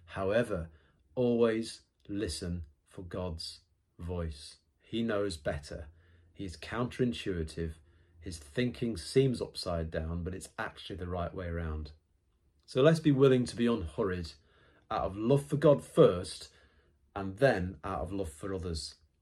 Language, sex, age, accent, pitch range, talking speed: English, male, 40-59, British, 80-115 Hz, 135 wpm